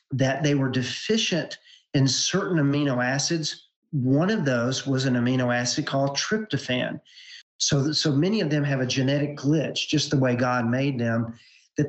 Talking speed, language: 165 wpm, English